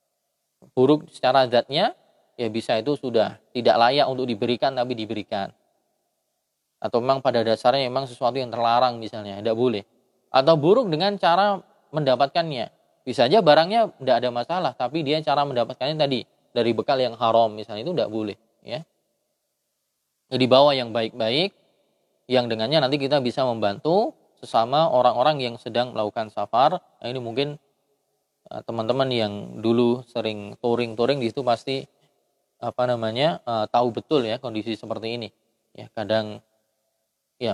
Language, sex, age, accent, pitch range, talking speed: Indonesian, male, 20-39, native, 110-135 Hz, 140 wpm